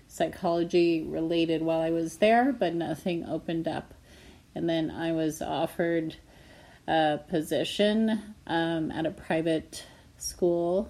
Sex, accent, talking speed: female, American, 120 wpm